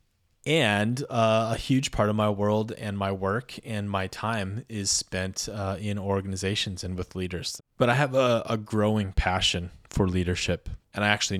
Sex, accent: male, American